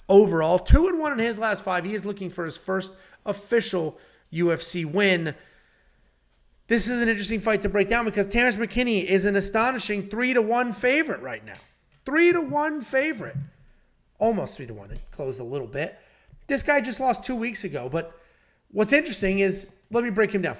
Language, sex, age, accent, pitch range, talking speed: English, male, 30-49, American, 155-220 Hz, 190 wpm